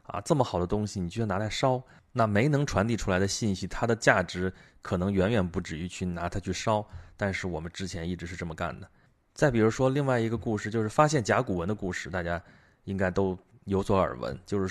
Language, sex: Chinese, male